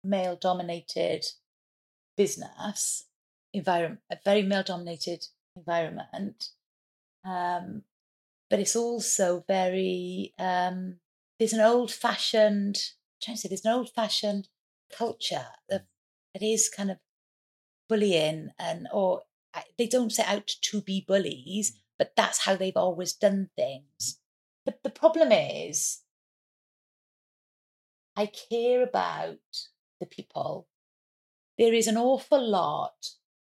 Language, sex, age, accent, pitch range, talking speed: English, female, 30-49, British, 180-220 Hz, 110 wpm